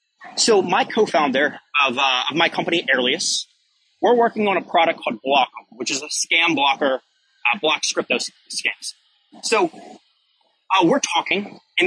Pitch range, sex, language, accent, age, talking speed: 165-260 Hz, male, English, American, 30-49, 145 wpm